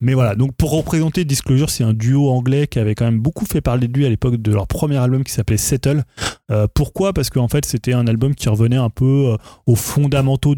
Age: 20-39